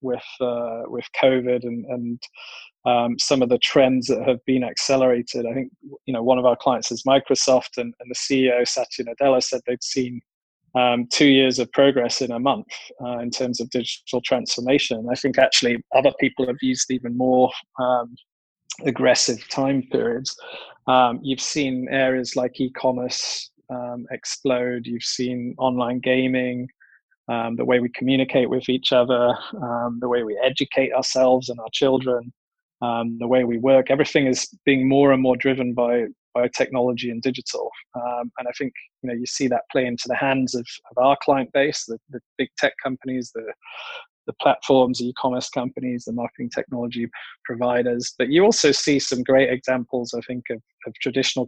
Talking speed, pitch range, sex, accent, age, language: 175 wpm, 120-130 Hz, male, British, 20-39, English